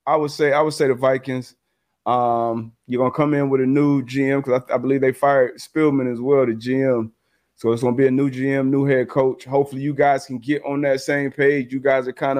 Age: 30-49